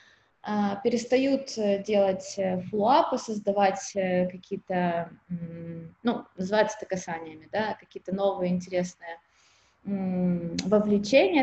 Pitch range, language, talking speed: 185-230 Hz, Russian, 75 wpm